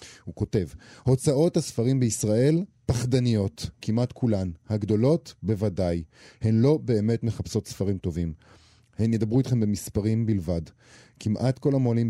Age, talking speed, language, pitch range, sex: 40-59, 120 wpm, Hebrew, 95-125 Hz, male